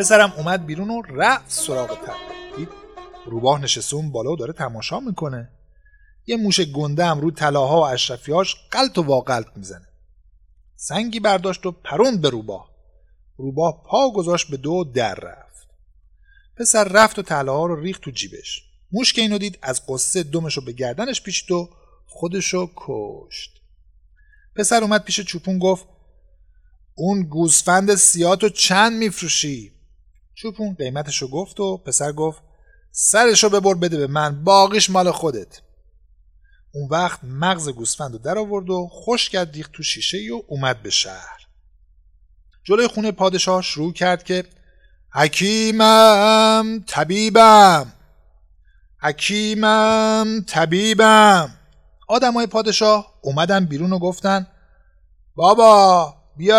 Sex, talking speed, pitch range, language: male, 130 wpm, 140-215 Hz, Persian